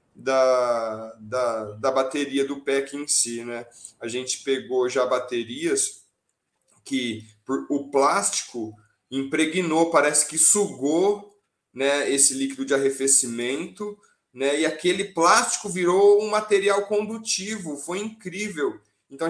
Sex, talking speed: male, 110 wpm